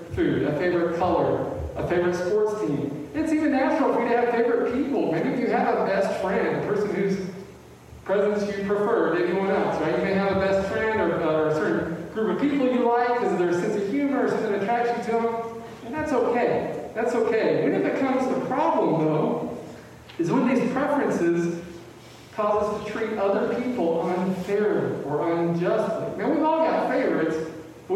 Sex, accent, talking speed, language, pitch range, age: male, American, 195 wpm, English, 165-225 Hz, 40-59